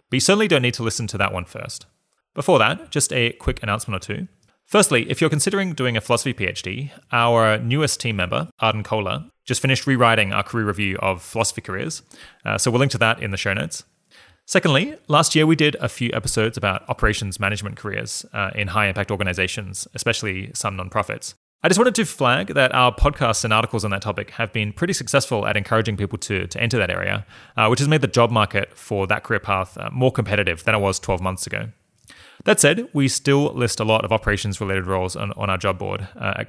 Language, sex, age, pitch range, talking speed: English, male, 20-39, 100-125 Hz, 220 wpm